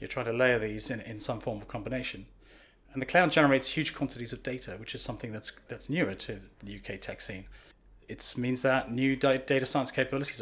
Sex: male